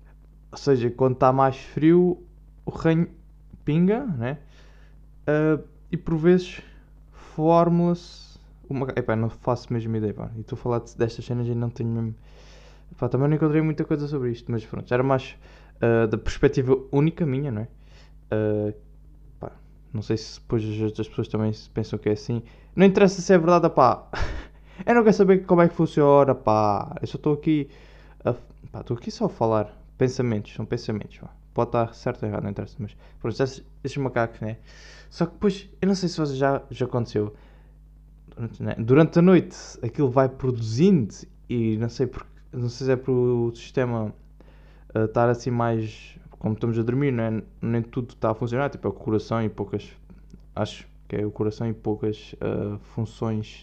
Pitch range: 110-145 Hz